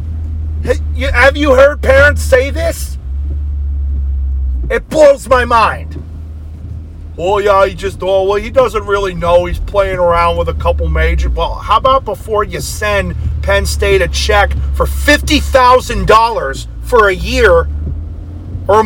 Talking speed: 135 wpm